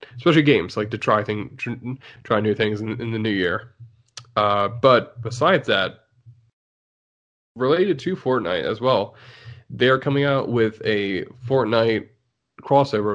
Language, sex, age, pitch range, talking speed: English, male, 20-39, 110-130 Hz, 135 wpm